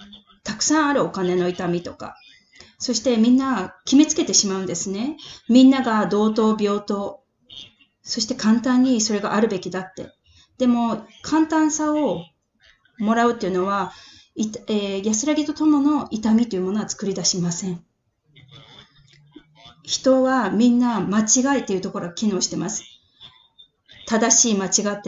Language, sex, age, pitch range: English, female, 20-39, 185-250 Hz